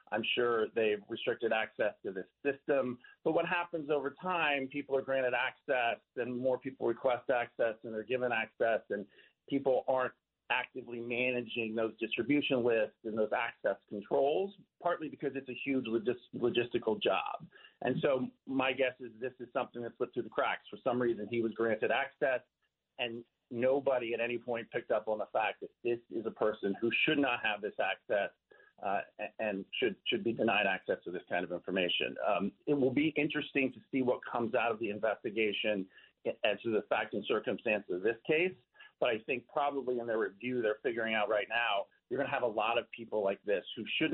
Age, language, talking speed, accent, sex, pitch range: 40-59, English, 195 wpm, American, male, 115-140 Hz